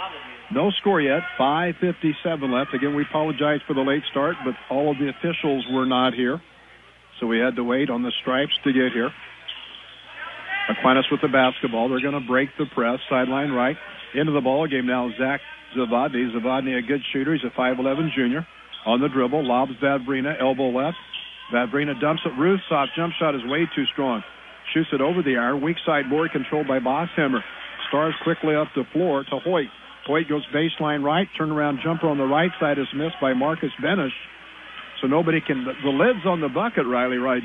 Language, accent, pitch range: English, American, 135-165 Hz